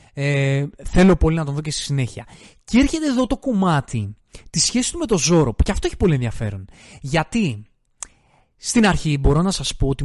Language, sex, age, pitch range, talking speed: Greek, male, 20-39, 125-180 Hz, 205 wpm